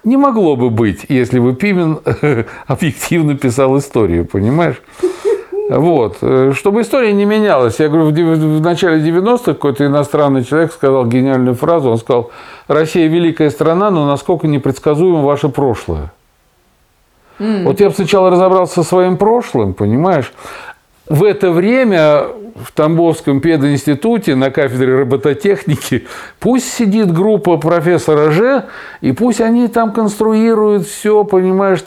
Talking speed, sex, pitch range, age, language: 125 wpm, male, 135-185 Hz, 50-69, Russian